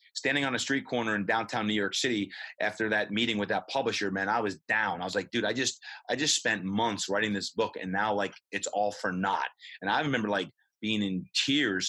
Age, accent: 30-49, American